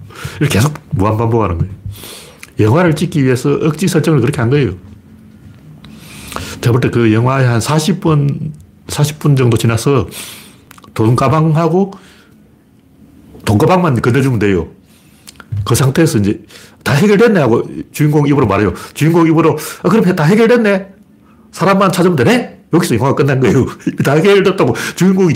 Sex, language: male, Korean